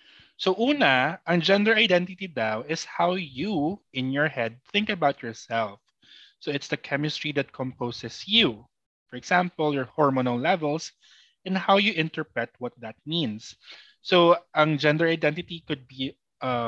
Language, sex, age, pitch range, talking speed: Filipino, male, 20-39, 125-175 Hz, 150 wpm